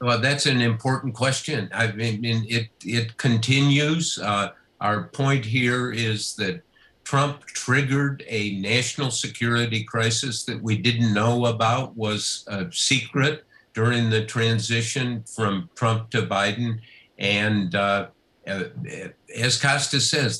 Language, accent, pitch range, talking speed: English, American, 110-130 Hz, 125 wpm